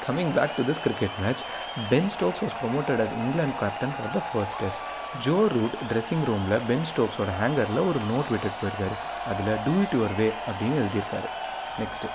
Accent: native